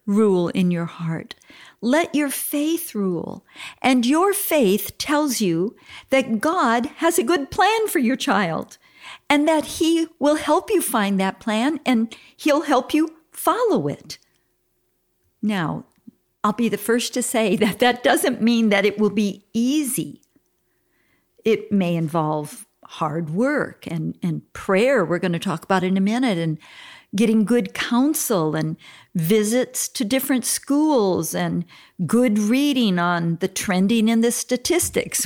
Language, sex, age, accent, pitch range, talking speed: English, female, 50-69, American, 200-290 Hz, 150 wpm